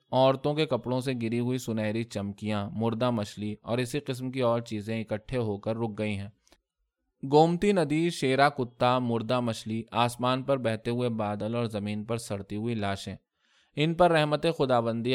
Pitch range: 110-135 Hz